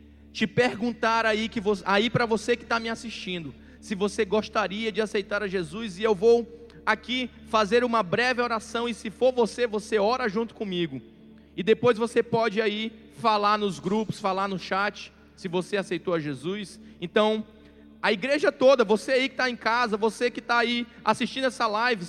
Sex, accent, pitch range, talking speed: male, Brazilian, 215-250 Hz, 180 wpm